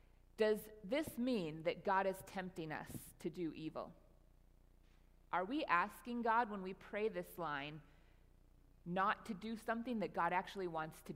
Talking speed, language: 155 wpm, English